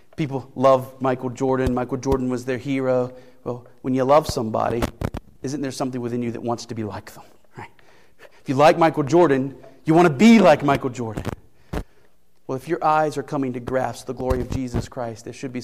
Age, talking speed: 40-59, 205 wpm